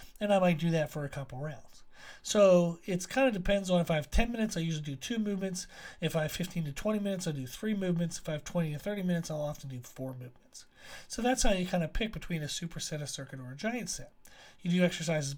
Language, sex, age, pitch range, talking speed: English, male, 40-59, 150-190 Hz, 260 wpm